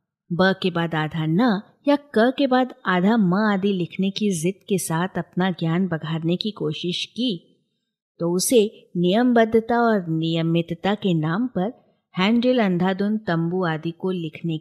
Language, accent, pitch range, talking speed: Hindi, native, 170-225 Hz, 160 wpm